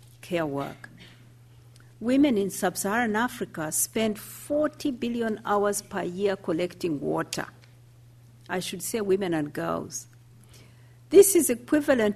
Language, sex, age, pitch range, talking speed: English, female, 50-69, 145-235 Hz, 120 wpm